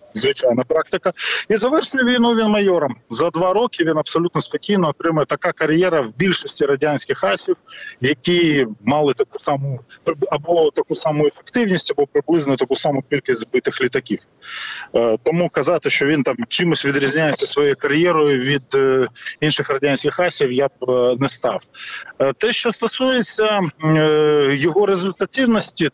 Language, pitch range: Ukrainian, 145-205 Hz